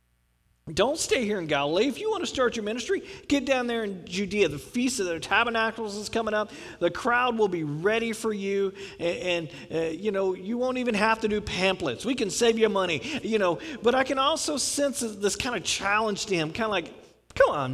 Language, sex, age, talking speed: English, male, 40-59, 225 wpm